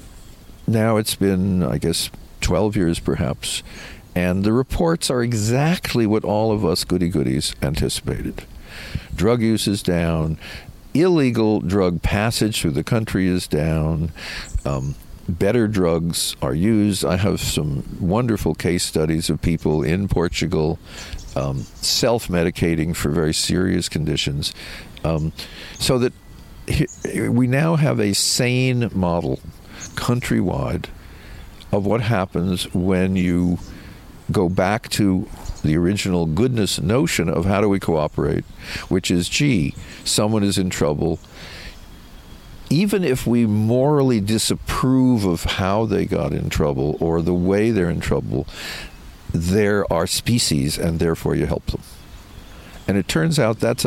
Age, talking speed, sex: 60-79, 130 wpm, male